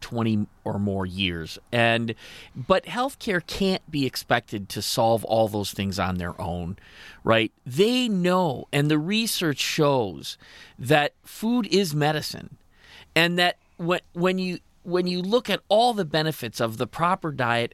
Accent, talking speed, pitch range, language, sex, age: American, 150 wpm, 115-180 Hz, English, male, 40-59